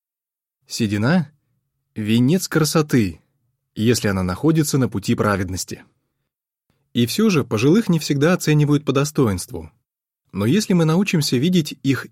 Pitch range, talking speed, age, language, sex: 115-165 Hz, 120 wpm, 20-39, Russian, male